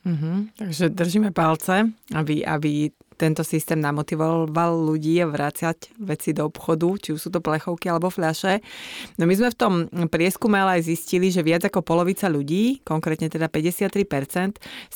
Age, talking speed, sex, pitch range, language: 30-49, 150 wpm, female, 160-200 Hz, Slovak